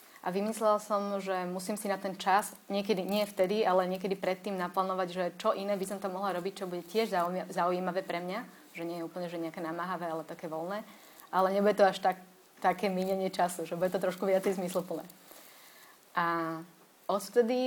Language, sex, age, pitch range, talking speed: Slovak, female, 20-39, 175-205 Hz, 190 wpm